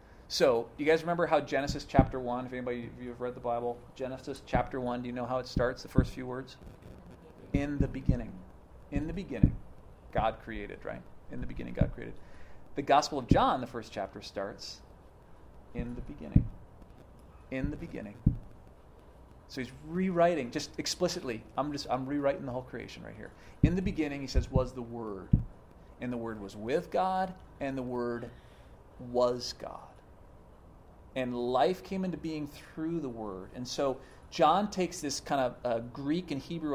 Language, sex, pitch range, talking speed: English, male, 120-145 Hz, 175 wpm